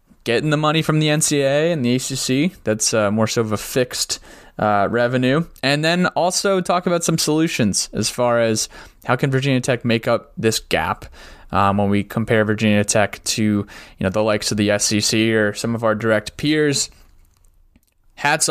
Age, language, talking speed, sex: 20-39, English, 185 wpm, male